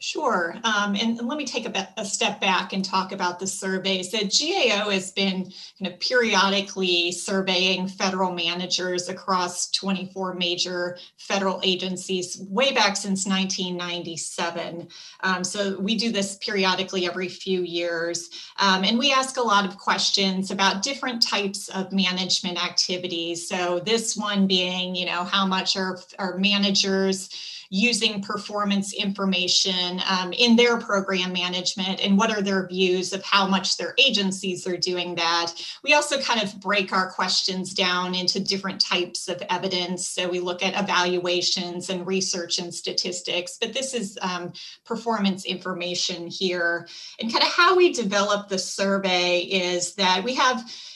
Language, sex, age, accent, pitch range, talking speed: English, female, 30-49, American, 180-200 Hz, 160 wpm